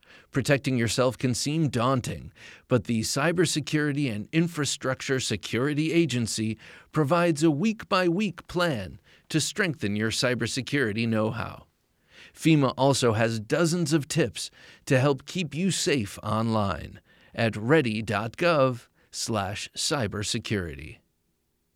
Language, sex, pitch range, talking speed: English, male, 110-150 Hz, 100 wpm